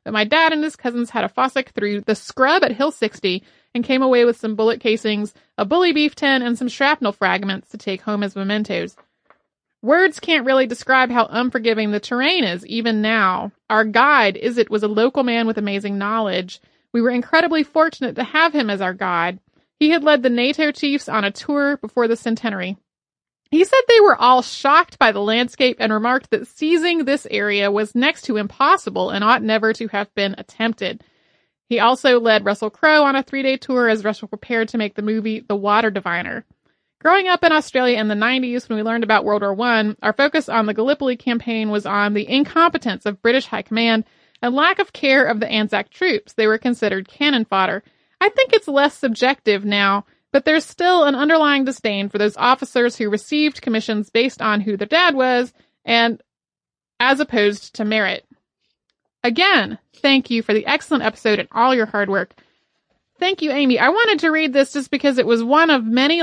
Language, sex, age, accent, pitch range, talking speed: English, female, 30-49, American, 215-280 Hz, 200 wpm